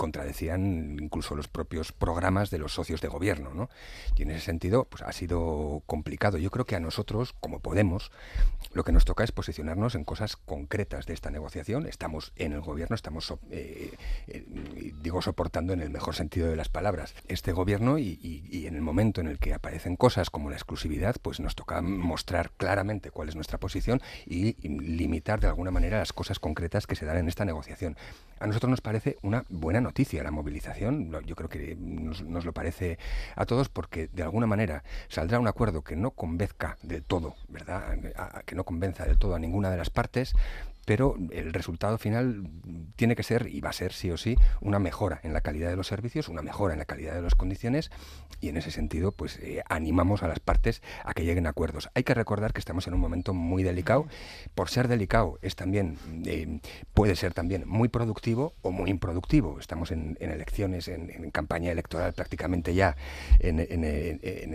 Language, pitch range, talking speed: Spanish, 80-100 Hz, 205 wpm